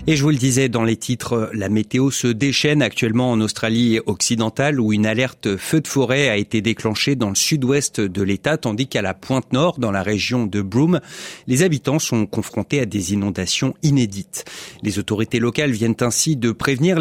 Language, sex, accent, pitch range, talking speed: French, male, French, 115-155 Hz, 195 wpm